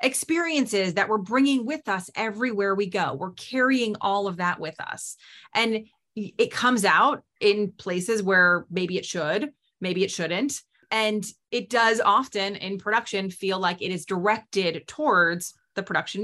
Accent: American